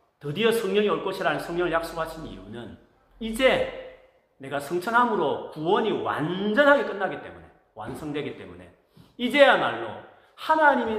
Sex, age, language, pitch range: male, 40-59, Korean, 140-230 Hz